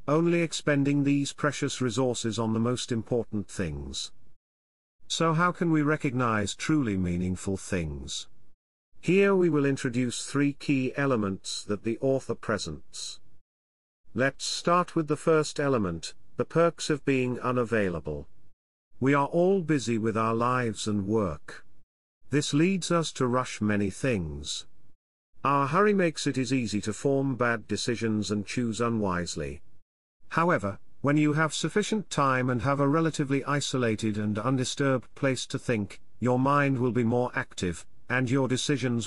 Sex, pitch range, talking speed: male, 105-145 Hz, 145 wpm